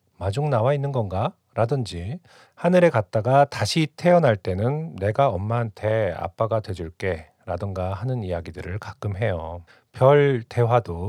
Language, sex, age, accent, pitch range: Korean, male, 40-59, native, 100-145 Hz